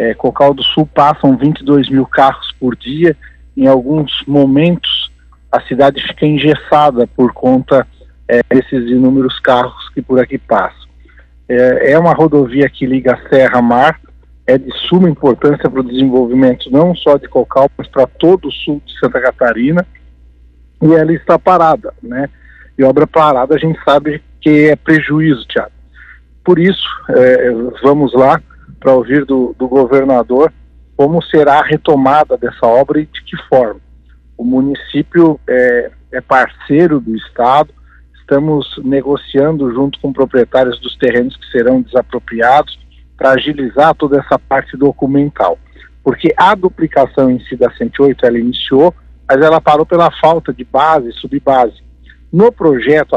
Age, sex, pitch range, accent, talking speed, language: 50-69, male, 120-150 Hz, Brazilian, 145 wpm, Portuguese